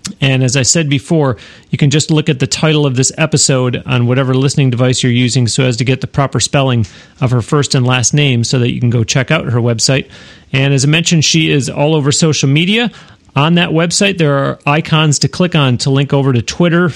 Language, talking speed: English, 235 wpm